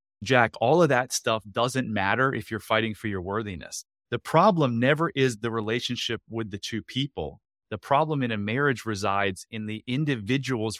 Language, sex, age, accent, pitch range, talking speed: English, male, 30-49, American, 105-130 Hz, 180 wpm